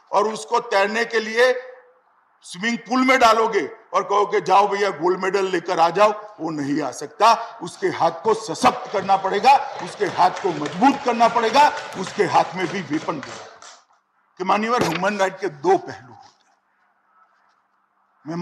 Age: 50-69